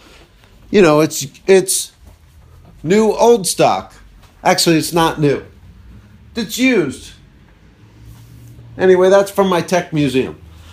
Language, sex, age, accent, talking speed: English, male, 50-69, American, 105 wpm